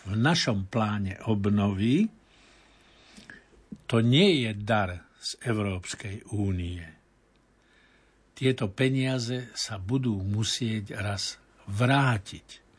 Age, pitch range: 60-79, 105-125 Hz